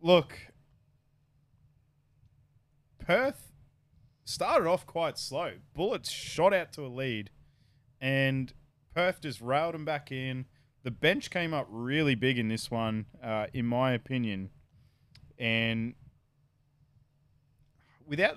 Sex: male